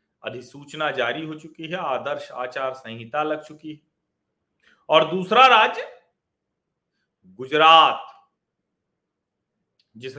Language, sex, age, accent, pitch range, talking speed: Hindi, male, 40-59, native, 140-185 Hz, 95 wpm